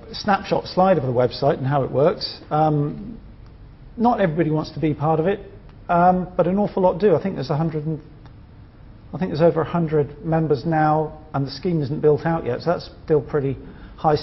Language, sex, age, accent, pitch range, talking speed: English, male, 40-59, British, 135-165 Hz, 205 wpm